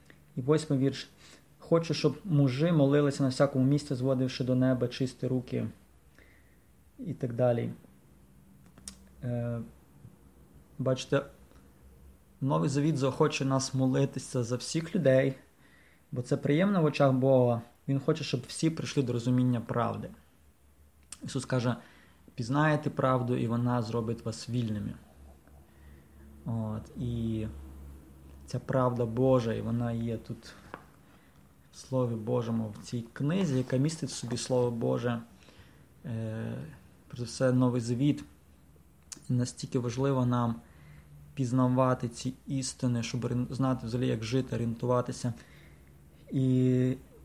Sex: male